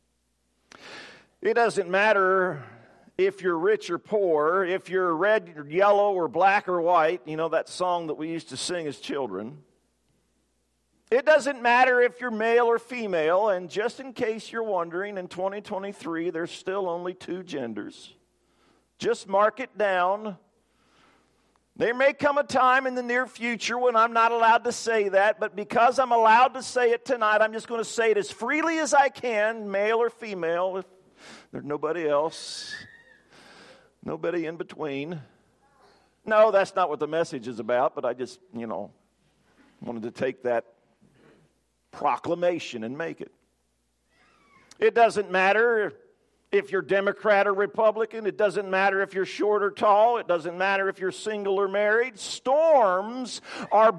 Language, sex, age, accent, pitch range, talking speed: English, male, 50-69, American, 175-230 Hz, 160 wpm